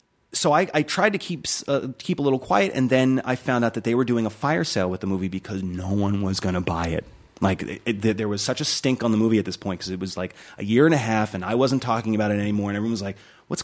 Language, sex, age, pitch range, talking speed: English, male, 30-49, 105-155 Hz, 305 wpm